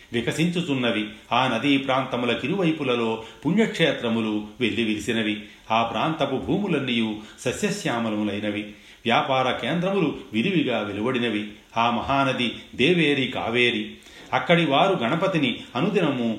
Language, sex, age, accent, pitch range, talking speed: Telugu, male, 40-59, native, 110-145 Hz, 85 wpm